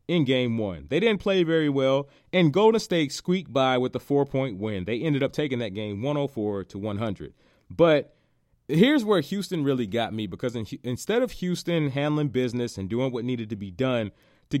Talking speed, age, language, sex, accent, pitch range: 195 wpm, 30-49, English, male, American, 115-155 Hz